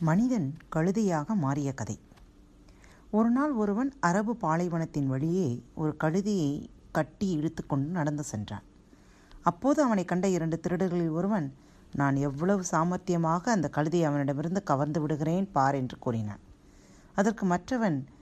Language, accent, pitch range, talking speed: Tamil, native, 140-205 Hz, 120 wpm